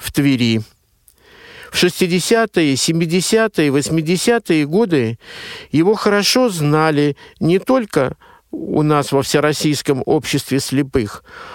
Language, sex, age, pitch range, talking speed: Russian, male, 50-69, 140-205 Hz, 90 wpm